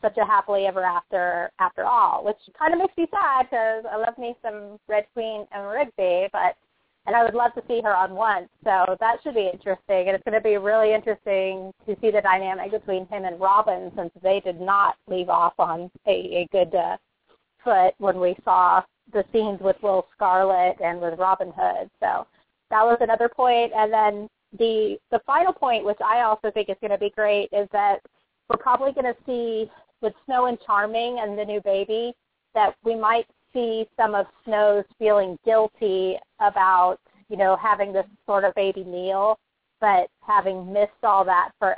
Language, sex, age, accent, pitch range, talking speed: English, female, 30-49, American, 190-225 Hz, 195 wpm